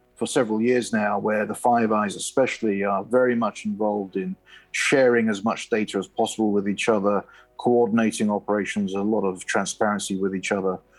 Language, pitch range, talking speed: English, 100-115 Hz, 175 wpm